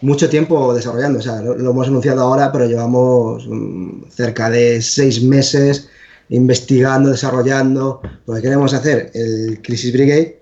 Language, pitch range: Spanish, 120-140 Hz